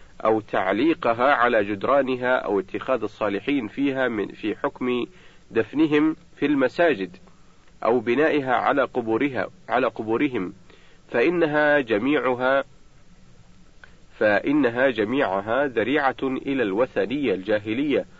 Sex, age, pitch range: male, 50-69, 110-145 Hz